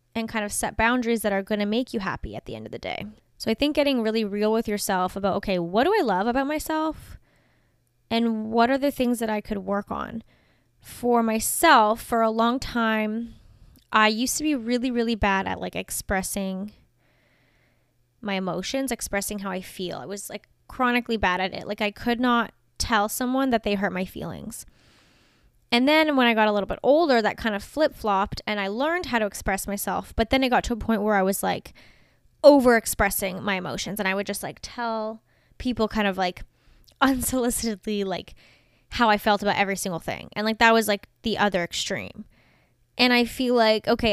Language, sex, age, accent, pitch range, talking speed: English, female, 10-29, American, 195-235 Hz, 205 wpm